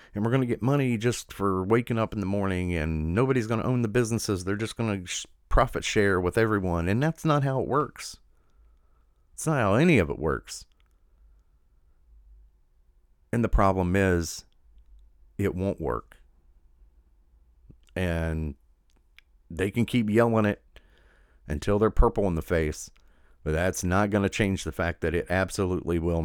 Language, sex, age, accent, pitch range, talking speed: English, male, 40-59, American, 75-105 Hz, 165 wpm